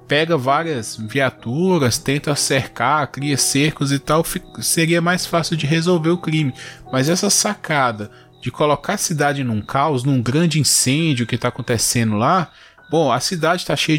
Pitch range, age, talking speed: 120-160 Hz, 20-39, 160 wpm